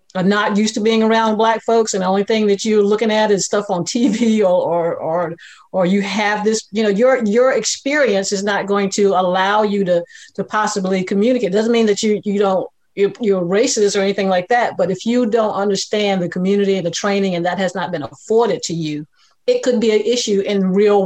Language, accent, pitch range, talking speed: English, American, 190-225 Hz, 230 wpm